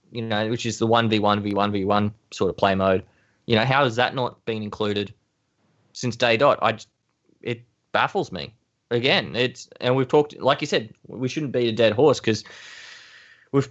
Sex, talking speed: male, 210 wpm